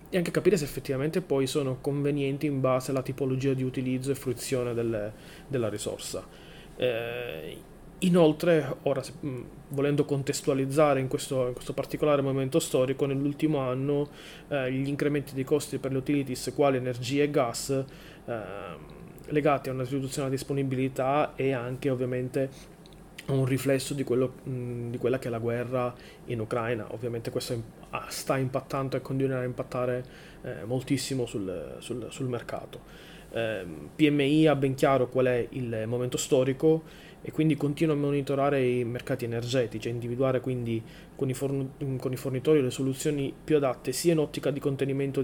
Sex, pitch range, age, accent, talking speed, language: male, 130-145 Hz, 30-49, native, 155 wpm, Italian